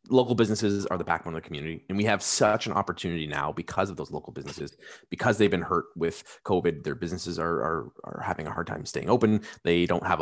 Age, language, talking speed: 20-39, English, 235 wpm